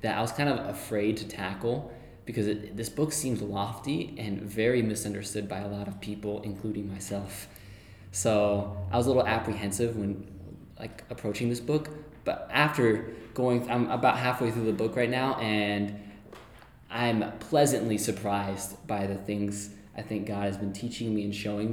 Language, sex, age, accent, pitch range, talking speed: English, male, 20-39, American, 105-120 Hz, 170 wpm